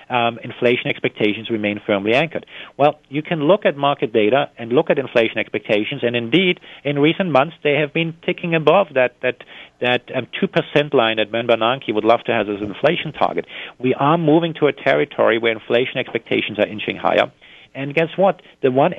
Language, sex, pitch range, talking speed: English, male, 120-155 Hz, 195 wpm